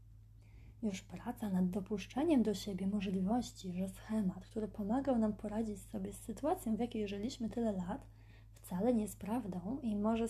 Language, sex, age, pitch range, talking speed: Polish, female, 20-39, 165-230 Hz, 155 wpm